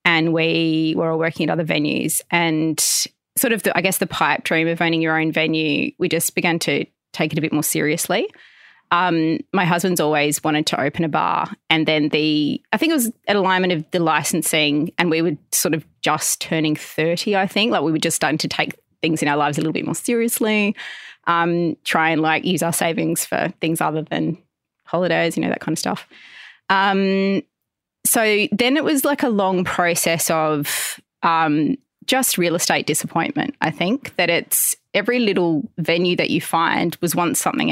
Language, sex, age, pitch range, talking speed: English, female, 20-39, 160-190 Hz, 200 wpm